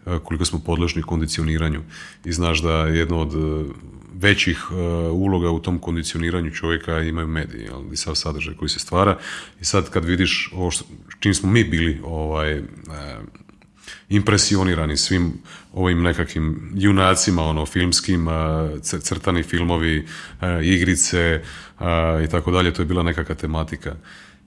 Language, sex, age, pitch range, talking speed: Croatian, male, 30-49, 80-95 Hz, 140 wpm